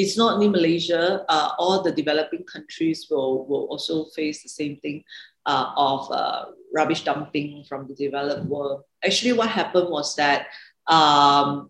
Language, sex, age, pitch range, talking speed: English, female, 40-59, 140-180 Hz, 160 wpm